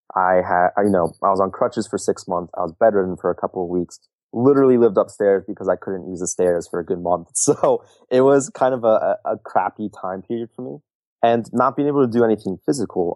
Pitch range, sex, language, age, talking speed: 90-110 Hz, male, English, 30-49, 235 wpm